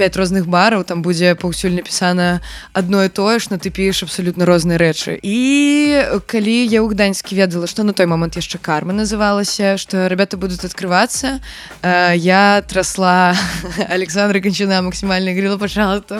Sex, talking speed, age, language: female, 150 wpm, 20-39, Russian